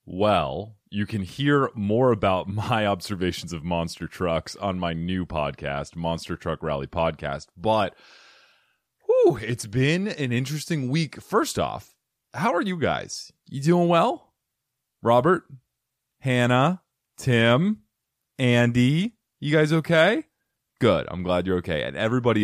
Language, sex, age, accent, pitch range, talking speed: English, male, 30-49, American, 85-130 Hz, 130 wpm